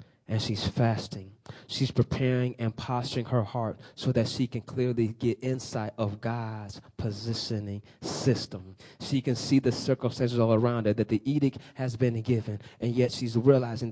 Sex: male